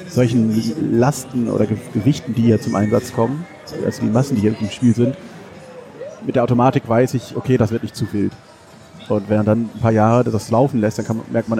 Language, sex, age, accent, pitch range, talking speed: German, male, 40-59, German, 105-125 Hz, 210 wpm